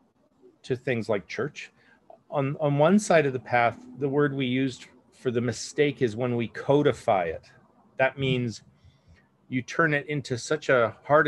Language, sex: English, male